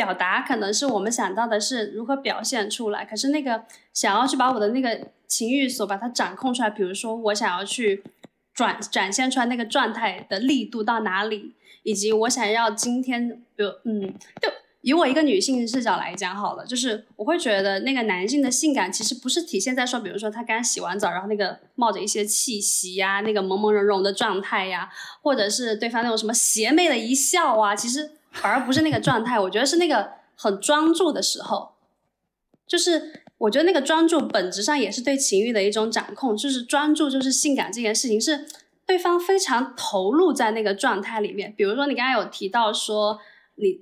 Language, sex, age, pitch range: Chinese, female, 20-39, 210-270 Hz